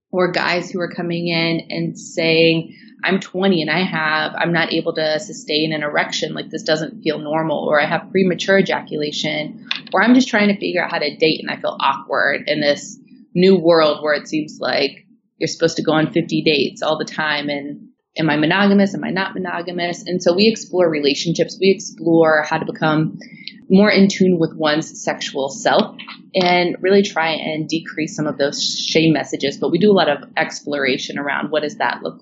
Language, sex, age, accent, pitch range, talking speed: English, female, 20-39, American, 155-205 Hz, 205 wpm